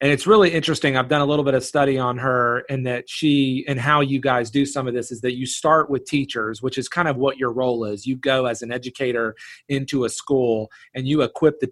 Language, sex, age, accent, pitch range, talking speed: English, male, 30-49, American, 125-145 Hz, 255 wpm